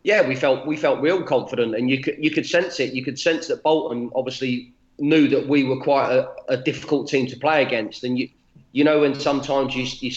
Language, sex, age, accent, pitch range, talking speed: English, male, 30-49, British, 125-145 Hz, 235 wpm